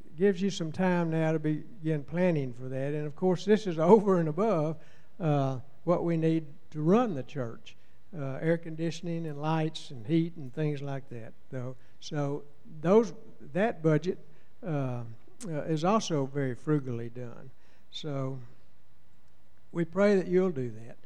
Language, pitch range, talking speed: English, 140-180 Hz, 155 wpm